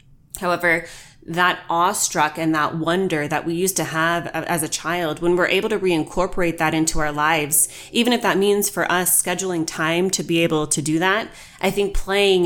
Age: 20-39